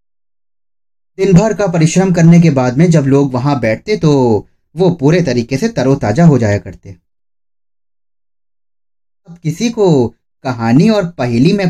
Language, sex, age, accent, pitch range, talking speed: Hindi, male, 30-49, native, 105-155 Hz, 145 wpm